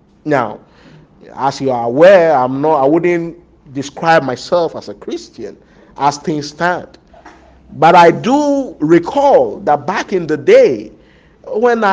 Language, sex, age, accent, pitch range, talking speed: English, male, 50-69, Nigerian, 150-210 Hz, 135 wpm